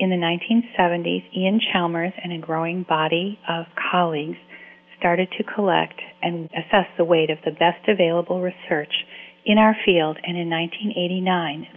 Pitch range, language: 165-195 Hz, English